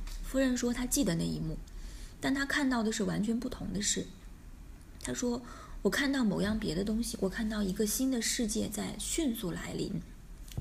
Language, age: Chinese, 20-39